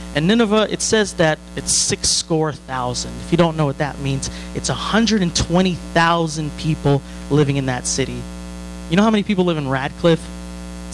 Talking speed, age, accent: 175 wpm, 30-49, American